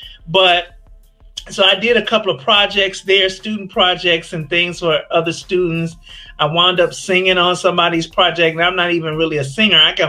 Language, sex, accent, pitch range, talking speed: English, male, American, 145-185 Hz, 190 wpm